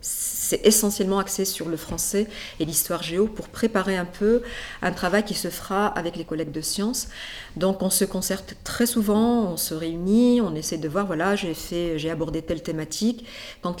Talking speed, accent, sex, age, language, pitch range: 190 wpm, French, female, 40-59, French, 170-235 Hz